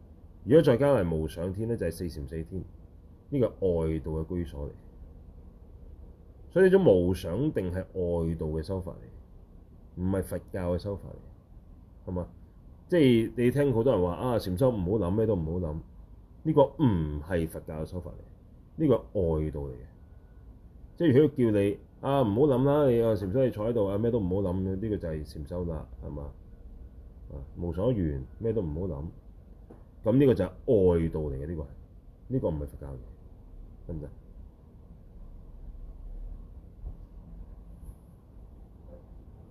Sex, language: male, Chinese